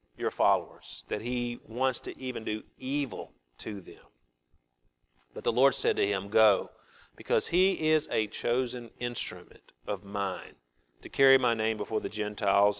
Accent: American